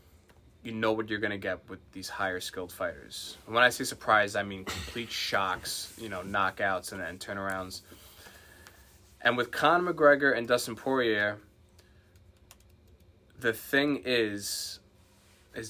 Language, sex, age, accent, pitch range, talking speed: English, male, 20-39, American, 90-115 Hz, 140 wpm